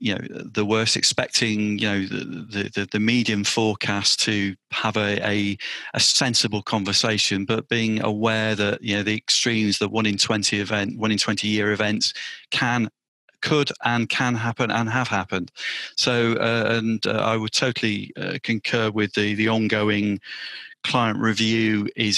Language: English